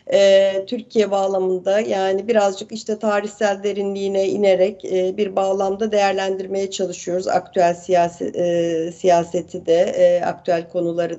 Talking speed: 90 wpm